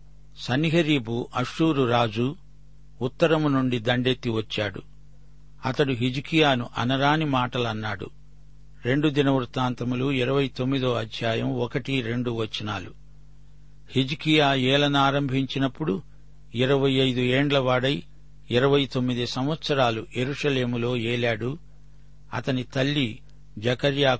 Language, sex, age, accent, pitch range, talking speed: Telugu, male, 60-79, native, 125-145 Hz, 80 wpm